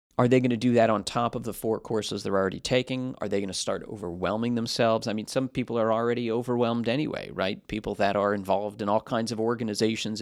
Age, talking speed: 40-59, 235 wpm